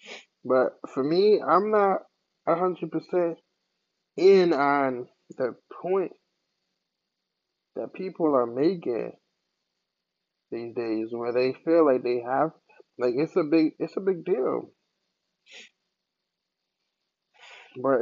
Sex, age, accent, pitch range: male, 20-39, American, 125-175 Hz